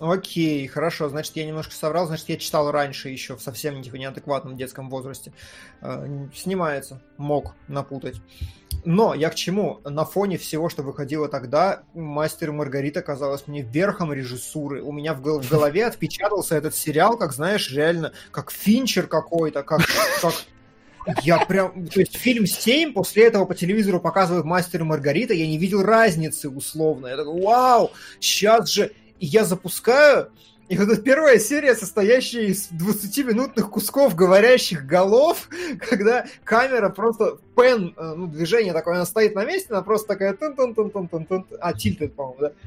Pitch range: 155-215 Hz